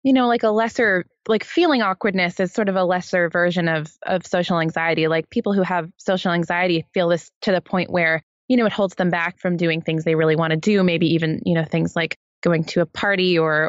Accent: American